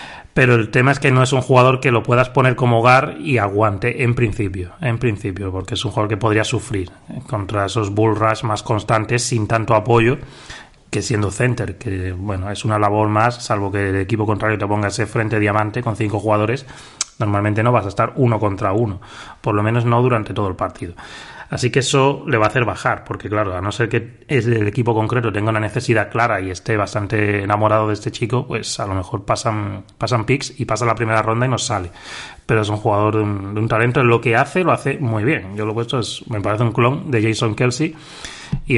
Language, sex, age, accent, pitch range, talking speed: Spanish, male, 30-49, Spanish, 105-125 Hz, 225 wpm